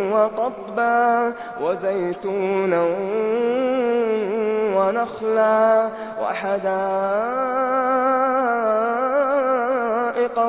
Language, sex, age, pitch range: Arabic, male, 20-39, 220-255 Hz